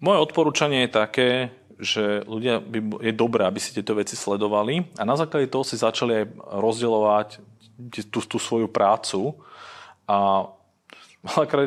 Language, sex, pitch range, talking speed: Slovak, male, 100-120 Hz, 140 wpm